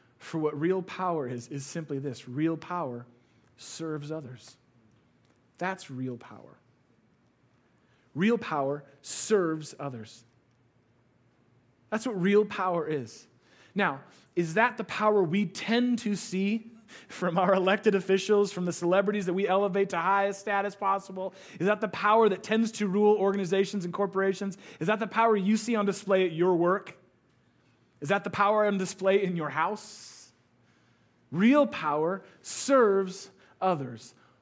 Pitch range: 140-205 Hz